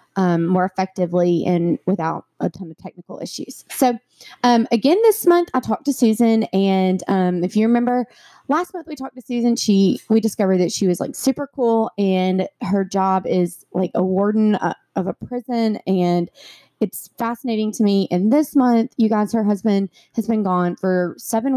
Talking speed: 185 wpm